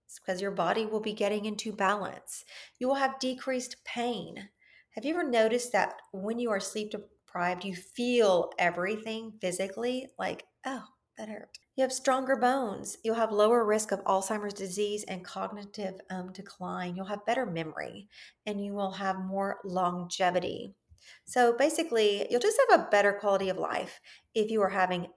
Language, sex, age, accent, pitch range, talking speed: English, female, 40-59, American, 190-240 Hz, 165 wpm